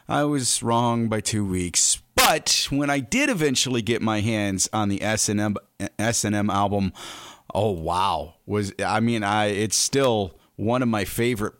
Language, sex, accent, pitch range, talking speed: English, male, American, 105-130 Hz, 160 wpm